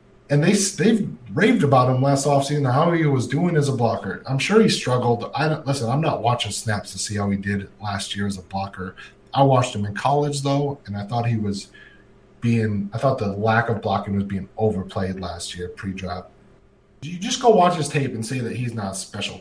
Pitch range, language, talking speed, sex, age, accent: 115-165 Hz, English, 230 wpm, male, 30-49, American